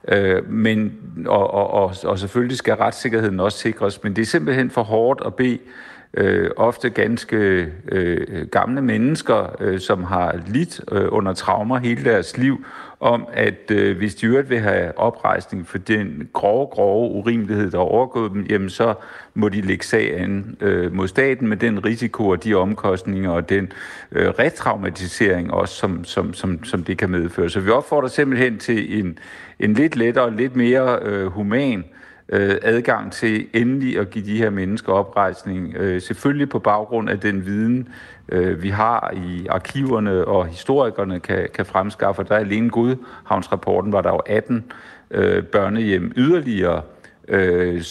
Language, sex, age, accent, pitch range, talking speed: Danish, male, 50-69, native, 95-120 Hz, 165 wpm